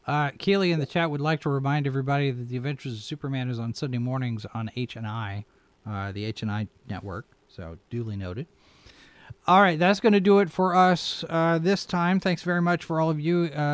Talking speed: 210 wpm